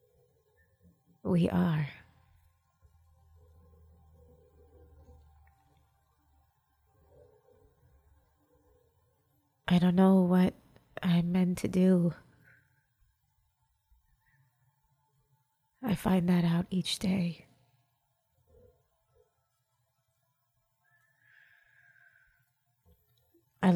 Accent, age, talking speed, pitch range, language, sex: American, 30-49, 45 wpm, 125-180 Hz, English, female